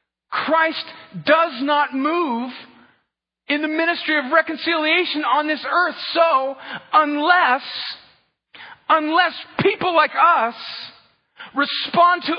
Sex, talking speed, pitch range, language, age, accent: male, 95 wpm, 250-335 Hz, English, 50-69, American